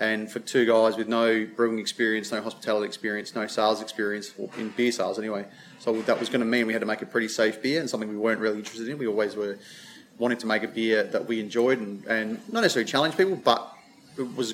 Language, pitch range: English, 110-130 Hz